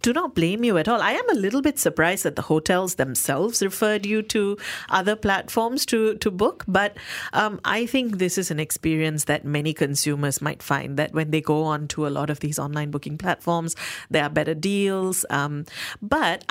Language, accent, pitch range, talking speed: English, Indian, 150-195 Hz, 205 wpm